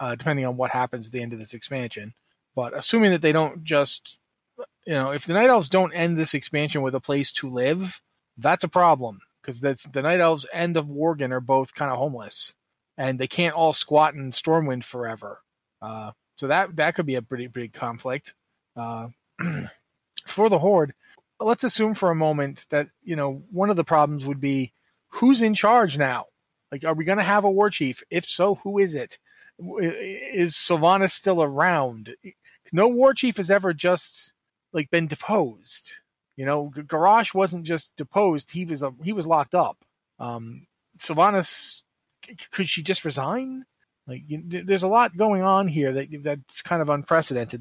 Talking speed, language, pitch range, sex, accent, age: 185 wpm, English, 135-185 Hz, male, American, 30-49